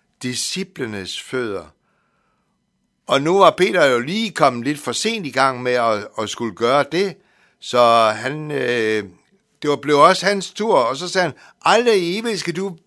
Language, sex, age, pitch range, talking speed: Danish, male, 60-79, 125-185 Hz, 165 wpm